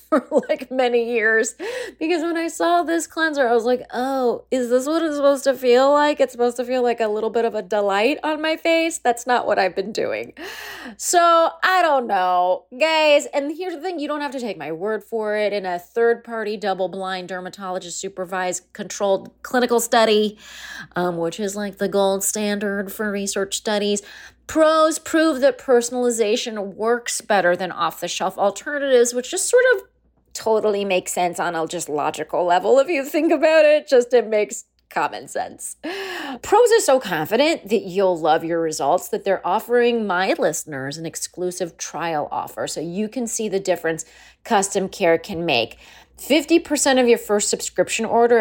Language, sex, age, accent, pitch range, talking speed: English, female, 30-49, American, 190-285 Hz, 180 wpm